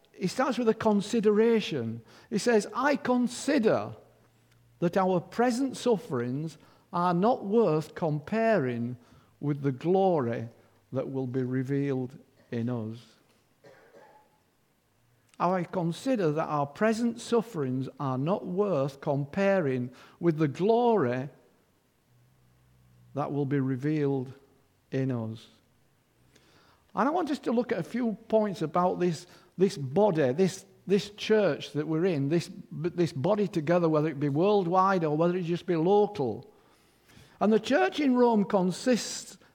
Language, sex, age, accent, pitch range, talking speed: English, male, 50-69, British, 140-215 Hz, 130 wpm